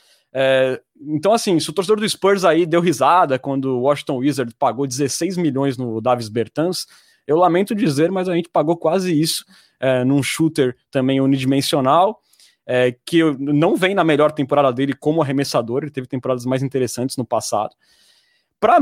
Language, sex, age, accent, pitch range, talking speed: Portuguese, male, 20-39, Brazilian, 130-160 Hz, 170 wpm